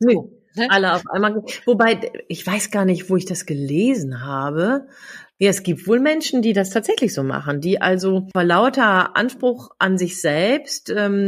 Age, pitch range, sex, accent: 40-59, 190-255 Hz, female, German